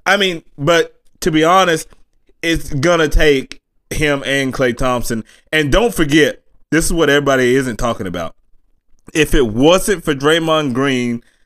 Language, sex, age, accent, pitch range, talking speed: English, male, 20-39, American, 135-180 Hz, 150 wpm